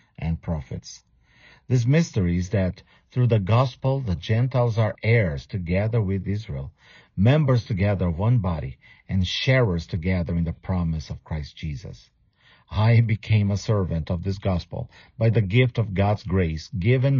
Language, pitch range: English, 90-120 Hz